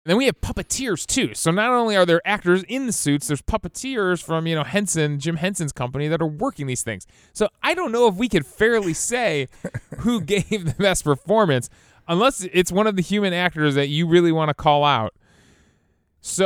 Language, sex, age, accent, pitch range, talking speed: English, male, 20-39, American, 150-185 Hz, 210 wpm